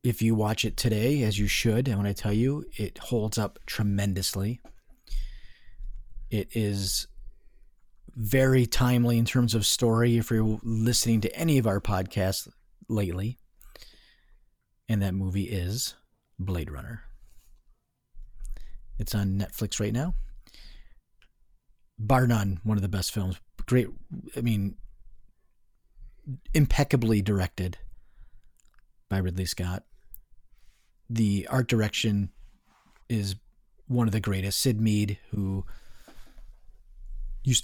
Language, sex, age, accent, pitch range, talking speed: English, male, 40-59, American, 100-115 Hz, 120 wpm